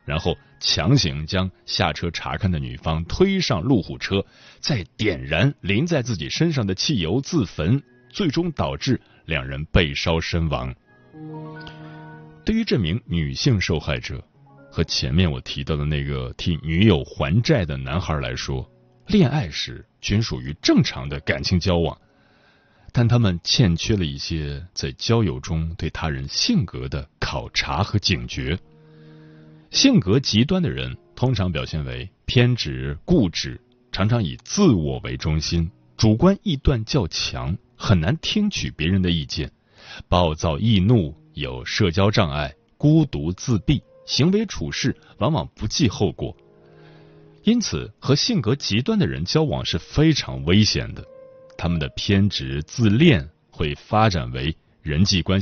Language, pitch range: Chinese, 75-125 Hz